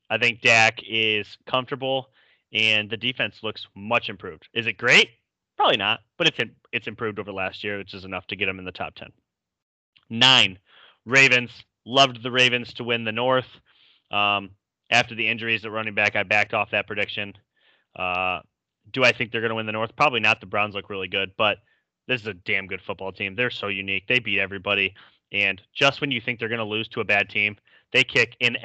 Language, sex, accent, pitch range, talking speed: English, male, American, 100-125 Hz, 215 wpm